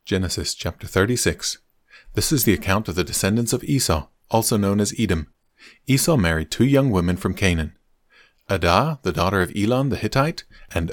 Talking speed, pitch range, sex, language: 170 wpm, 85-110 Hz, male, English